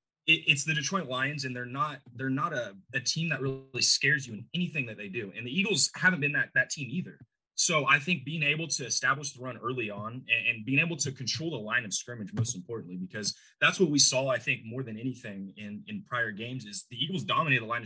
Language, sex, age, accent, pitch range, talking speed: English, male, 20-39, American, 115-150 Hz, 240 wpm